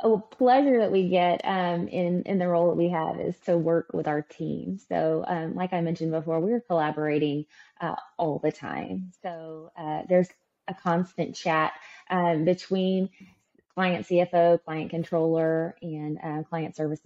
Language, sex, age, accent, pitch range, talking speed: English, female, 20-39, American, 160-190 Hz, 165 wpm